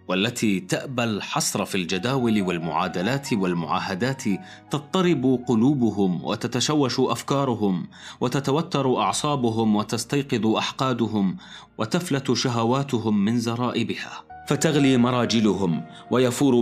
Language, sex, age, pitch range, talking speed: Arabic, male, 30-49, 105-135 Hz, 80 wpm